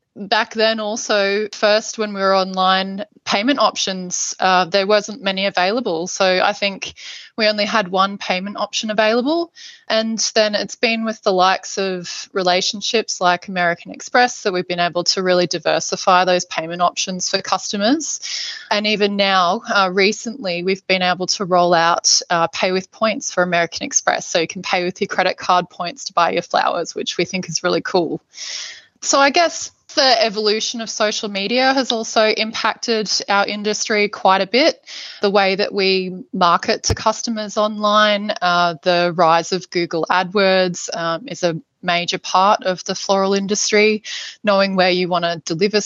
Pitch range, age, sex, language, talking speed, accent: 180-215 Hz, 20-39, female, English, 170 wpm, Australian